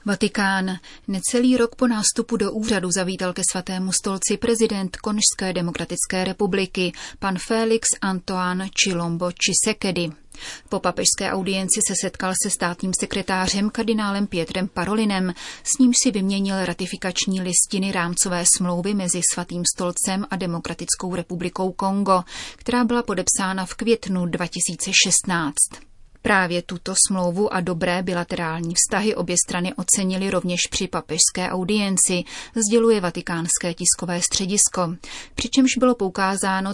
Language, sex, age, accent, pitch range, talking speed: Czech, female, 30-49, native, 175-205 Hz, 120 wpm